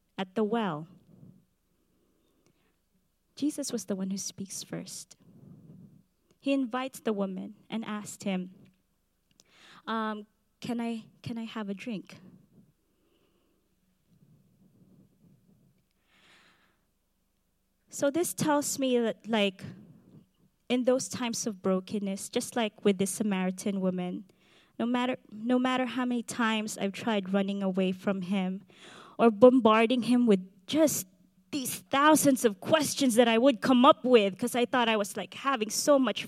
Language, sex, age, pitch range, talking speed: English, female, 20-39, 195-245 Hz, 130 wpm